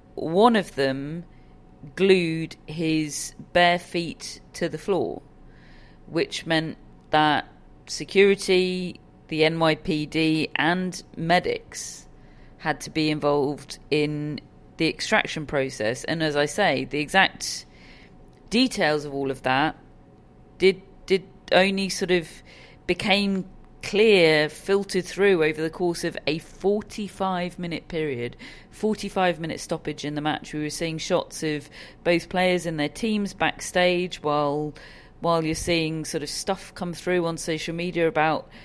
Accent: British